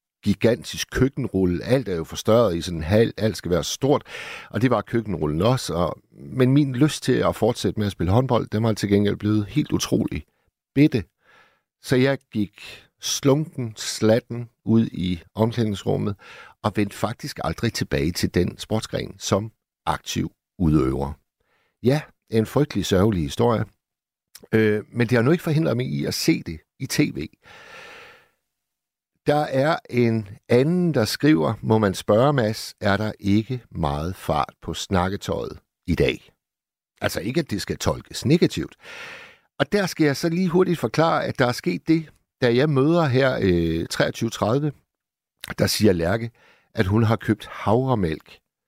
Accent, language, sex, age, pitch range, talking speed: native, Danish, male, 60-79, 105-140 Hz, 155 wpm